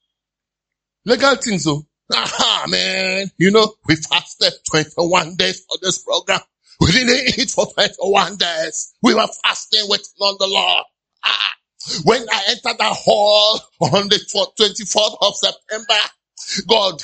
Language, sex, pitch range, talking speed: English, male, 190-305 Hz, 135 wpm